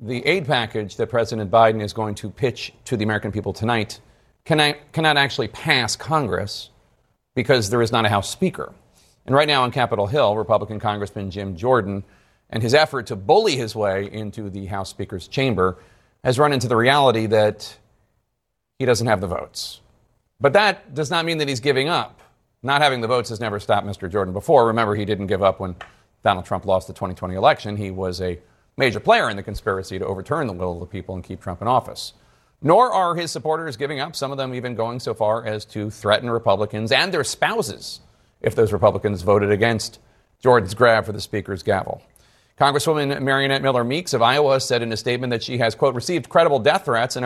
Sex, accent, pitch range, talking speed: male, American, 105-130 Hz, 205 wpm